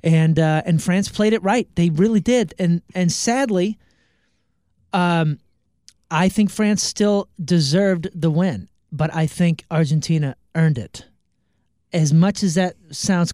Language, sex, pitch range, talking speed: English, male, 145-185 Hz, 145 wpm